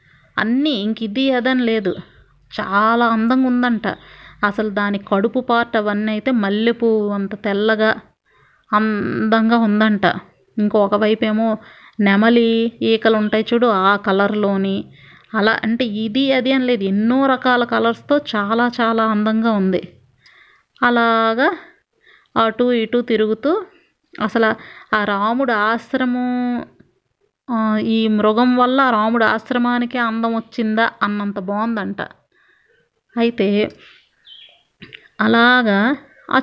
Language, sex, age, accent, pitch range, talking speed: Telugu, female, 30-49, native, 210-245 Hz, 95 wpm